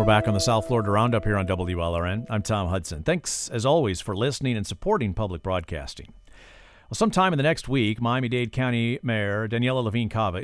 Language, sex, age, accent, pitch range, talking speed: English, male, 50-69, American, 100-135 Hz, 185 wpm